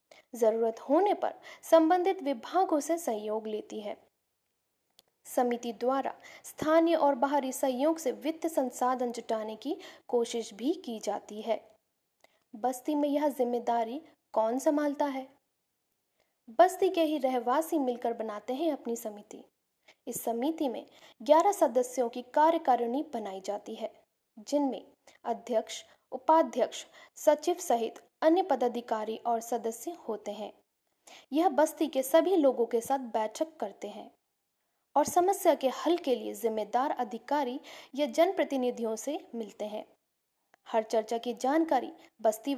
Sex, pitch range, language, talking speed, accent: female, 230-315 Hz, Hindi, 130 wpm, native